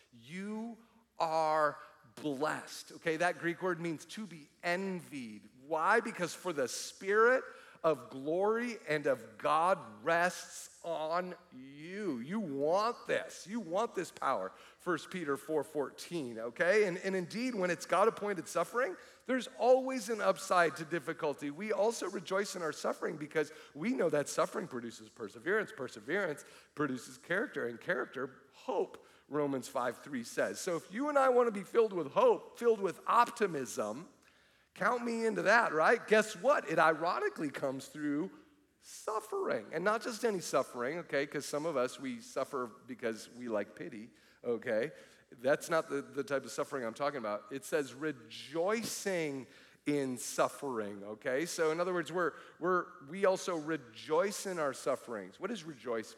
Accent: American